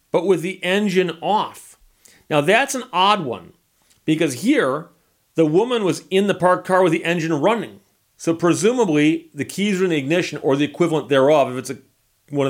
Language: English